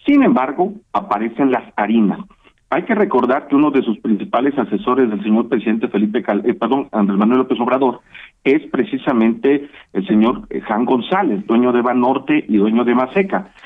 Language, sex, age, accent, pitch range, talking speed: Spanish, male, 50-69, Mexican, 125-195 Hz, 165 wpm